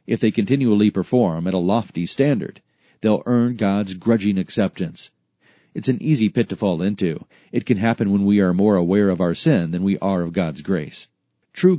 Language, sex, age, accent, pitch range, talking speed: English, male, 40-59, American, 95-125 Hz, 195 wpm